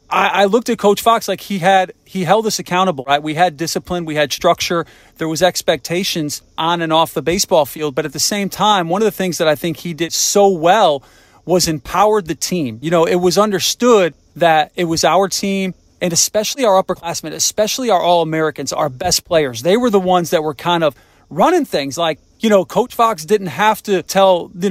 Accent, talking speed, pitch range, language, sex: American, 215 wpm, 165-200 Hz, English, male